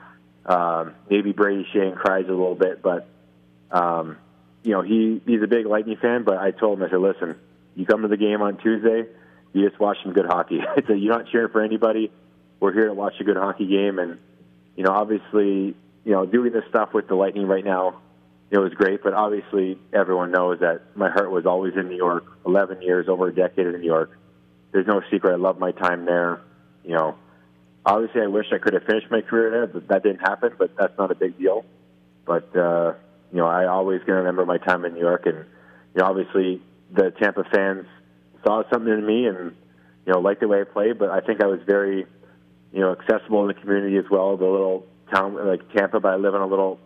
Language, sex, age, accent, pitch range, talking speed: English, male, 20-39, American, 80-100 Hz, 230 wpm